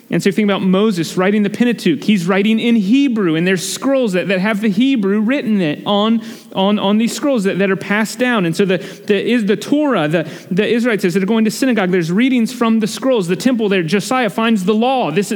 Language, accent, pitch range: English, American, 190-235 Hz